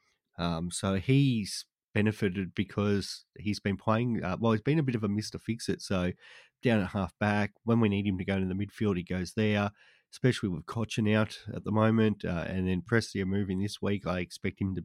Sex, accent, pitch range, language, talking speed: male, Australian, 95-110 Hz, English, 215 wpm